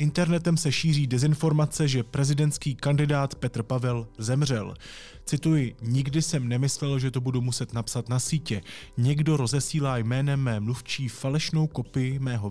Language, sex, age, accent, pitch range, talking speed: Czech, male, 20-39, native, 120-145 Hz, 140 wpm